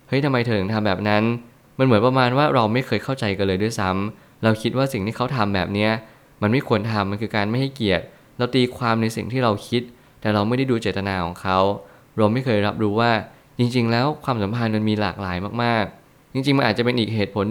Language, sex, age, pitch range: Thai, male, 20-39, 105-125 Hz